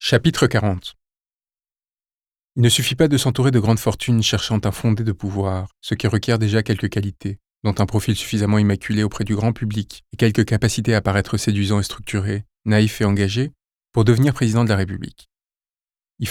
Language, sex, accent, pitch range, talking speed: French, male, French, 105-125 Hz, 180 wpm